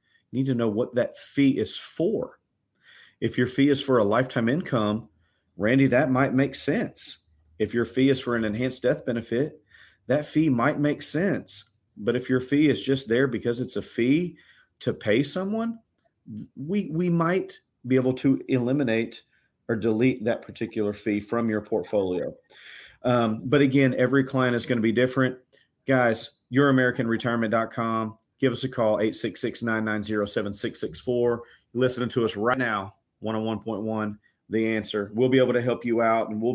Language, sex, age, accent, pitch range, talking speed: English, male, 40-59, American, 110-130 Hz, 160 wpm